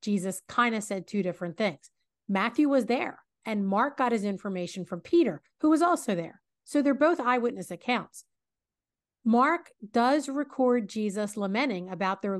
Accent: American